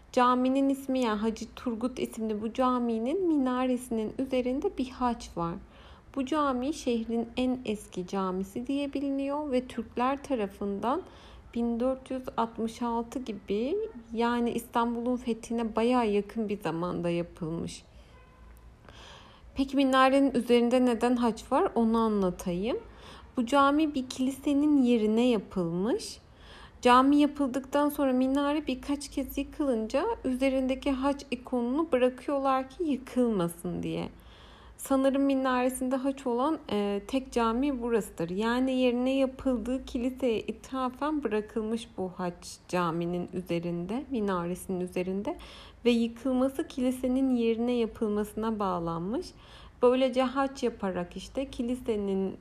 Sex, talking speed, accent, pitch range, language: female, 105 wpm, native, 215-265 Hz, Turkish